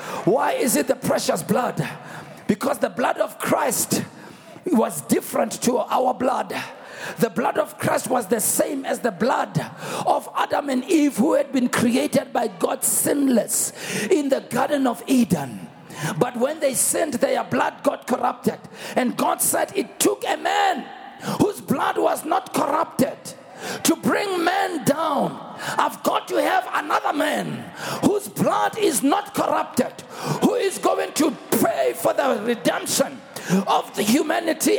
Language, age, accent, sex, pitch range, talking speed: English, 50-69, South African, male, 255-350 Hz, 150 wpm